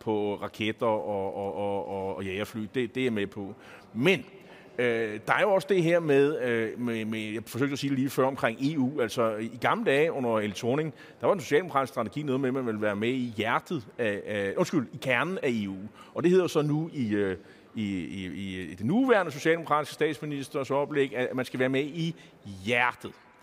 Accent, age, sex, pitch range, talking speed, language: native, 30-49, male, 110-145 Hz, 215 wpm, Danish